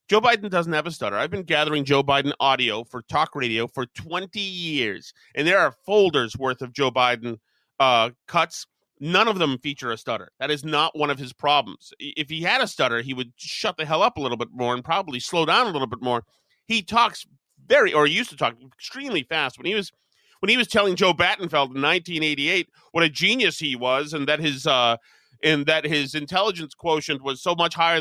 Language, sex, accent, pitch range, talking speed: English, male, American, 145-215 Hz, 215 wpm